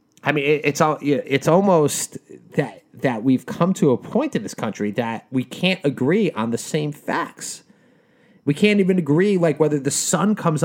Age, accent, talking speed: 30-49, American, 190 wpm